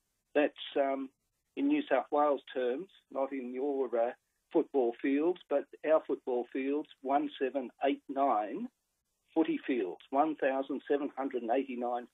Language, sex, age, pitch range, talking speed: English, male, 50-69, 125-155 Hz, 105 wpm